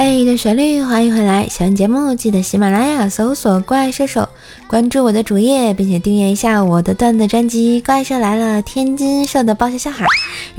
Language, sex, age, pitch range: Chinese, female, 20-39, 195-270 Hz